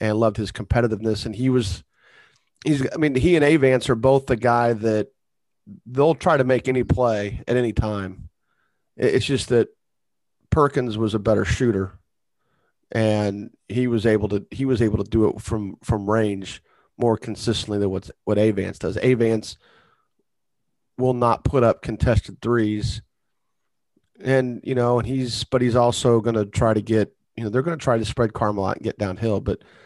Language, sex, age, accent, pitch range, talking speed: English, male, 40-59, American, 105-130 Hz, 180 wpm